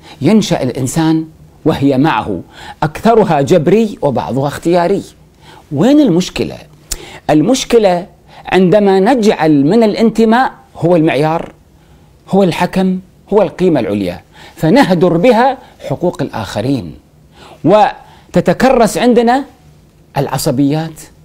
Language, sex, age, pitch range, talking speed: Arabic, male, 40-59, 140-205 Hz, 80 wpm